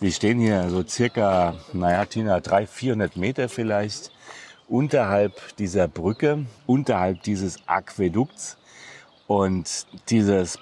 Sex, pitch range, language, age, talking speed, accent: male, 100-130 Hz, German, 40-59, 105 wpm, German